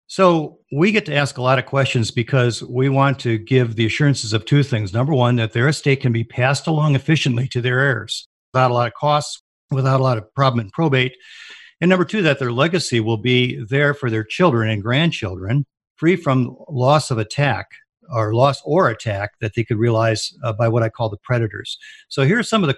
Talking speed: 220 wpm